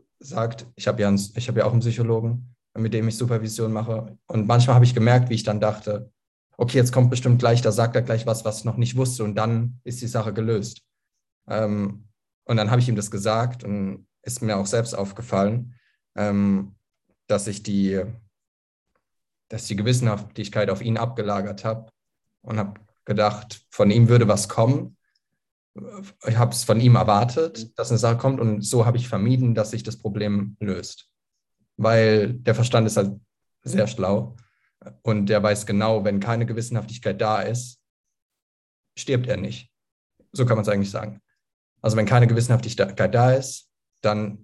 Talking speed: 170 wpm